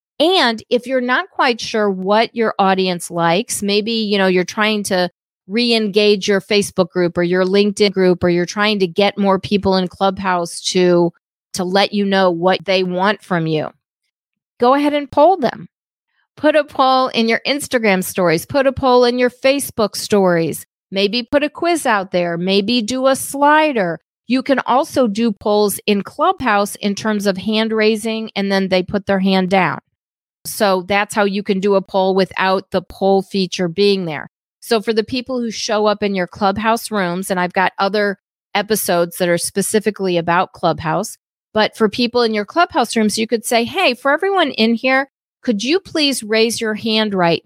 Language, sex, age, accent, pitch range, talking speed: English, female, 40-59, American, 190-235 Hz, 185 wpm